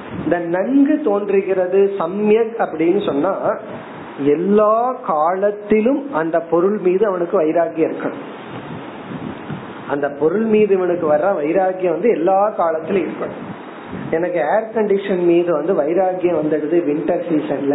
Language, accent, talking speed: Tamil, native, 100 wpm